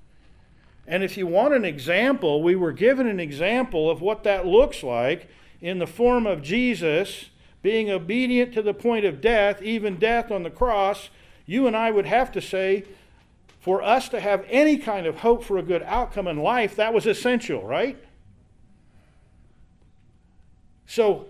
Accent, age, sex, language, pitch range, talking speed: American, 50-69, male, English, 140-220 Hz, 165 wpm